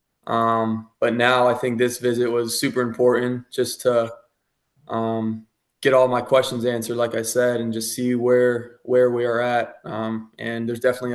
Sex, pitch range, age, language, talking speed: male, 115-125 Hz, 20-39, English, 180 wpm